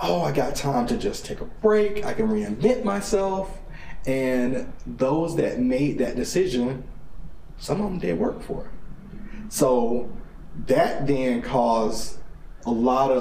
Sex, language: male, English